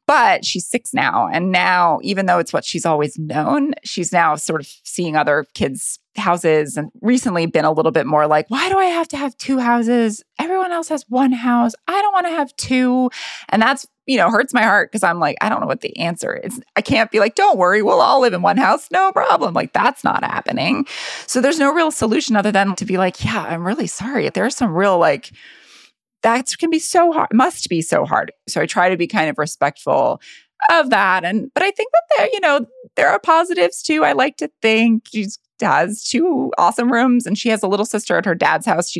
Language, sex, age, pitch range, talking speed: English, female, 20-39, 175-265 Hz, 235 wpm